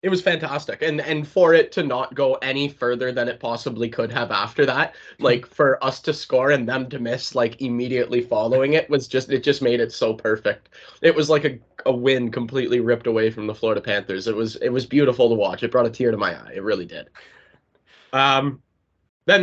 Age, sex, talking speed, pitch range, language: 20-39, male, 220 wpm, 115-140 Hz, English